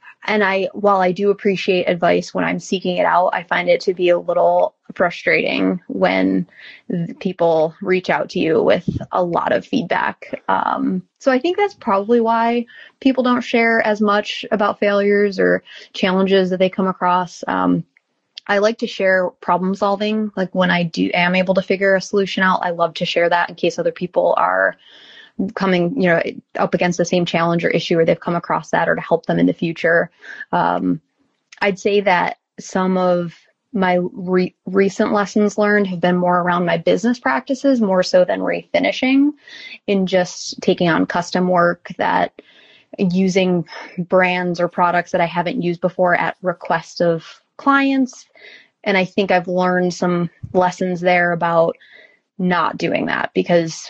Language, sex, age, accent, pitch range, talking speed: English, female, 20-39, American, 175-205 Hz, 175 wpm